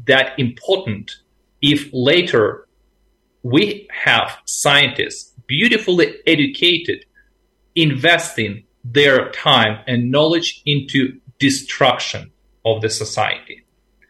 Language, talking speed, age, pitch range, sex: English, 80 wpm, 40-59, 125-165 Hz, male